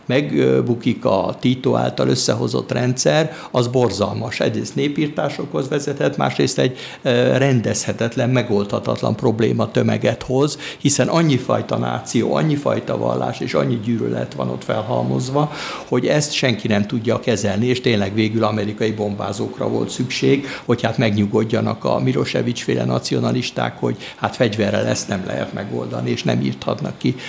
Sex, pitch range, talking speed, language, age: male, 100-130 Hz, 135 wpm, Hungarian, 60-79